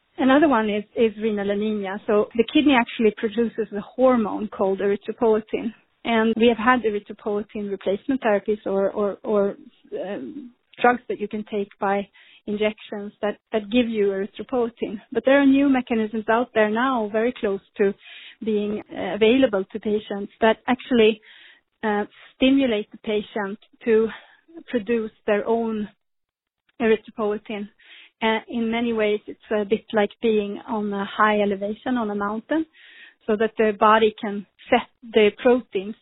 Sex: female